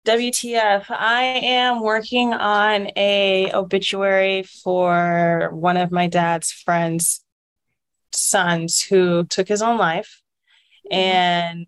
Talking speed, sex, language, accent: 105 wpm, female, English, American